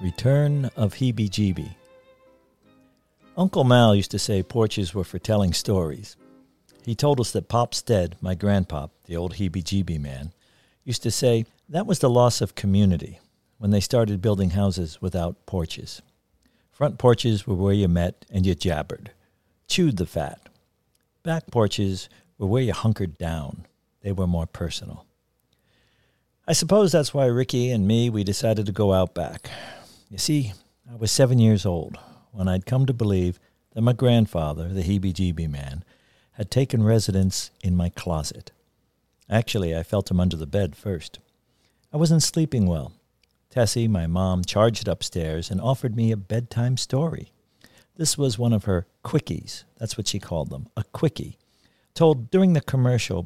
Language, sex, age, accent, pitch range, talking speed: English, male, 60-79, American, 90-120 Hz, 160 wpm